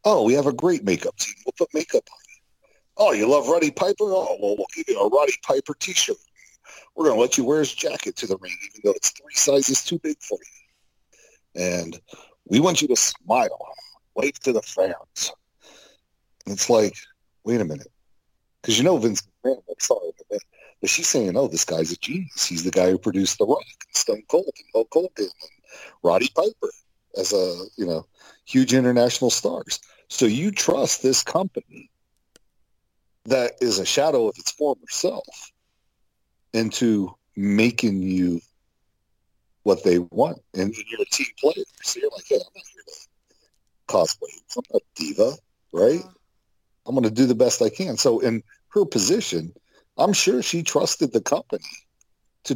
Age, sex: 40-59, male